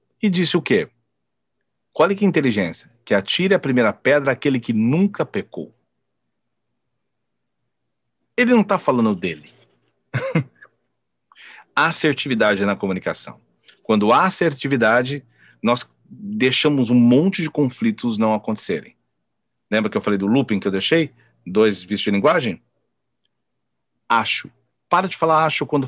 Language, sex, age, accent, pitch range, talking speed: Portuguese, male, 40-59, Brazilian, 110-150 Hz, 130 wpm